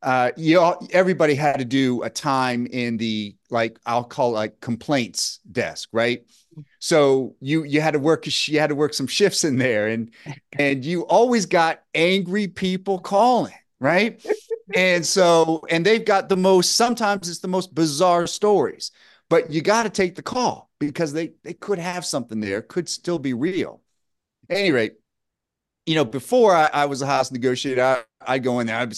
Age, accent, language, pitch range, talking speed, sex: 30-49, American, English, 130-175 Hz, 185 wpm, male